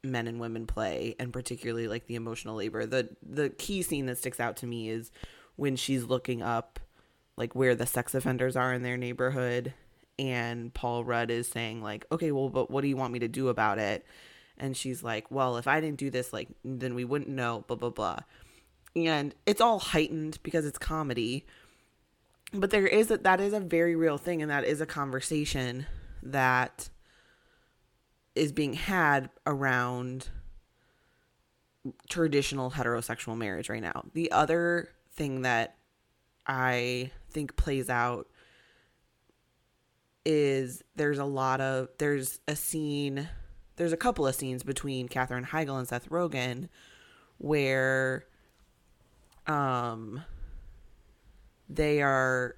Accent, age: American, 20-39